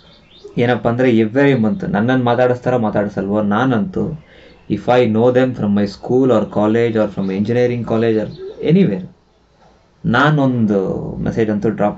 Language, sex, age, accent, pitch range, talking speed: English, male, 20-39, Indian, 110-160 Hz, 105 wpm